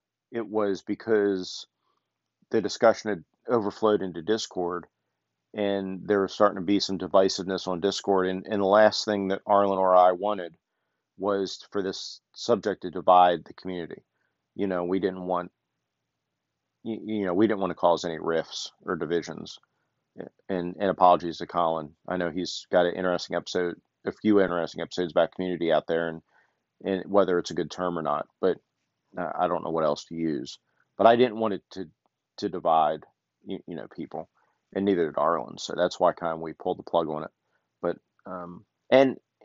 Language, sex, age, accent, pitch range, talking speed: English, male, 40-59, American, 90-100 Hz, 185 wpm